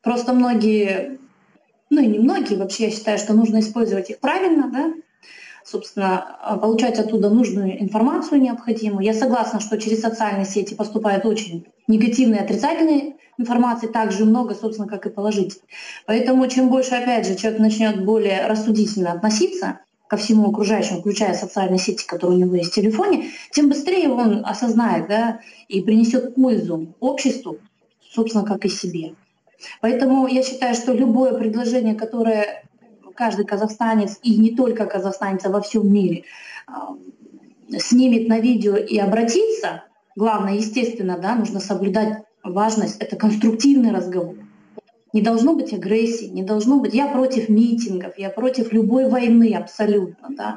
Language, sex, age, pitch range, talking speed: Russian, female, 20-39, 205-245 Hz, 140 wpm